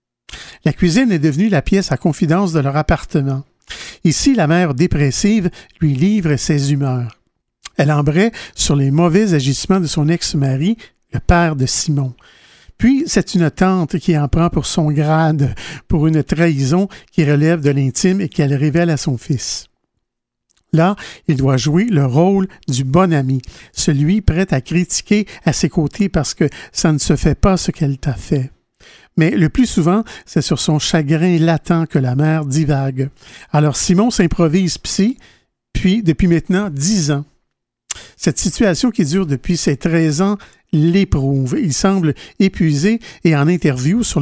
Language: French